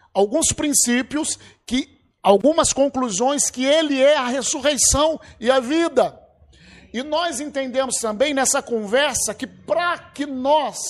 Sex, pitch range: male, 245-300 Hz